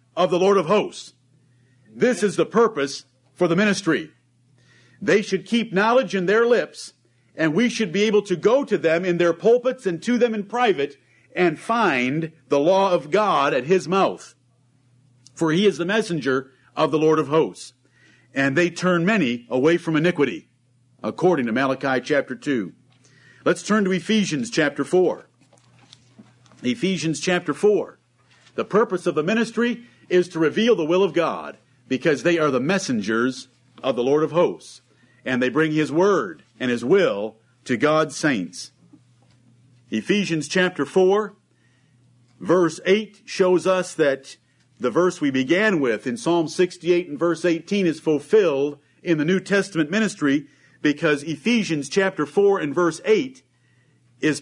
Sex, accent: male, American